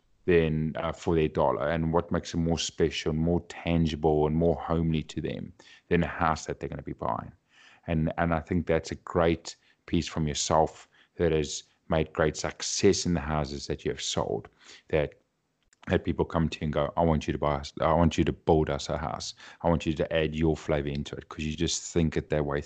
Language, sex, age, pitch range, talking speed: English, male, 30-49, 75-85 Hz, 235 wpm